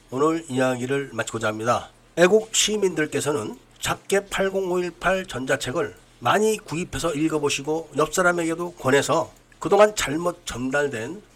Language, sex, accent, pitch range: Korean, male, native, 140-180 Hz